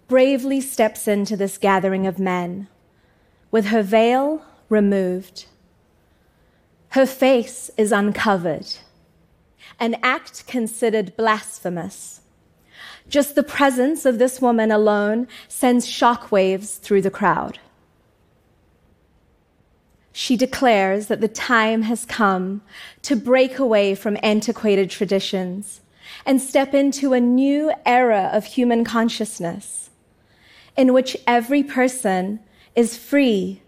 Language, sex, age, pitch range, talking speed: English, female, 30-49, 190-250 Hz, 105 wpm